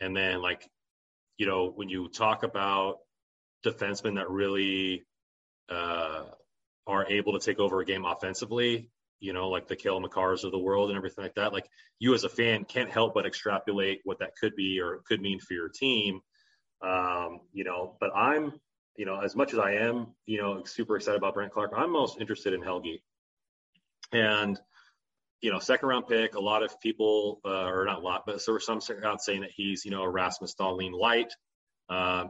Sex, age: male, 30-49